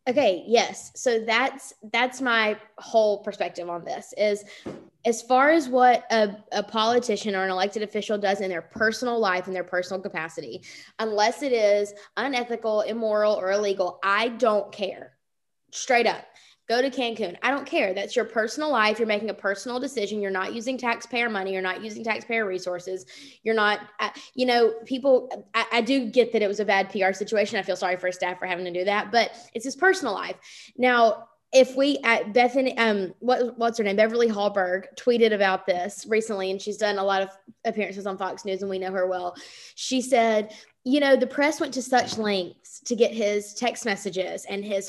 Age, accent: 20-39, American